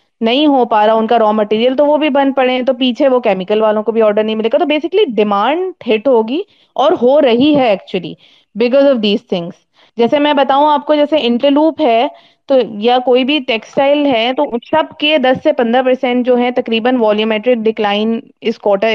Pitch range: 235-300 Hz